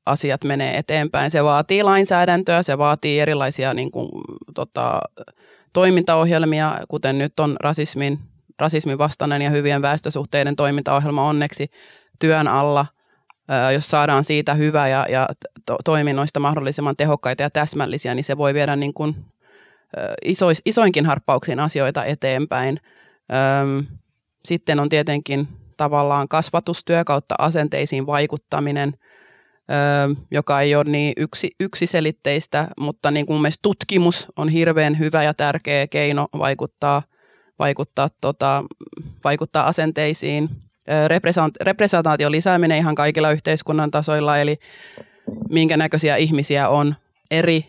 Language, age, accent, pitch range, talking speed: Finnish, 20-39, native, 140-160 Hz, 120 wpm